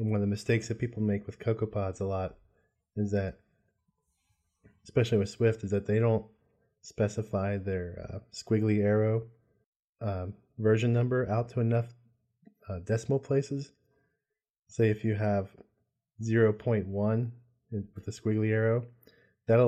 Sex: male